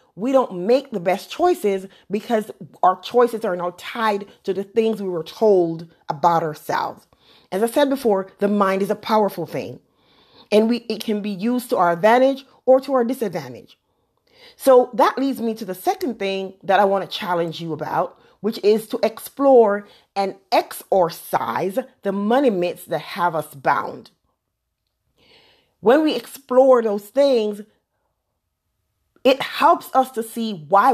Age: 40-59